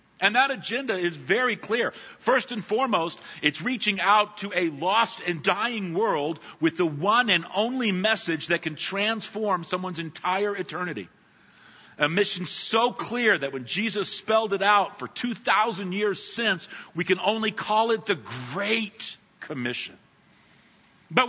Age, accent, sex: 50-69, American, male